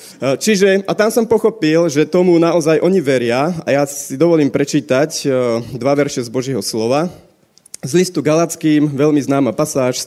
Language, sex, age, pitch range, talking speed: Slovak, male, 30-49, 140-175 Hz, 160 wpm